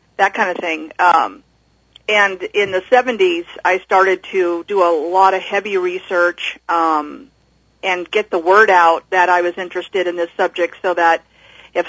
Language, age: English, 50-69